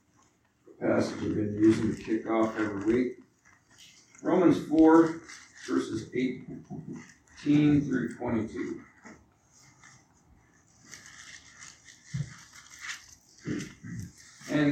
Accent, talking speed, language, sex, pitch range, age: American, 60 wpm, English, male, 110-150 Hz, 50-69